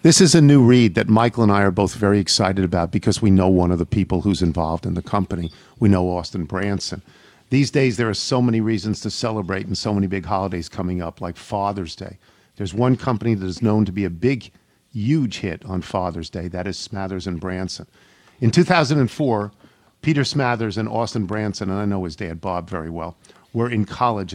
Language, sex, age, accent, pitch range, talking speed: English, male, 50-69, American, 95-120 Hz, 215 wpm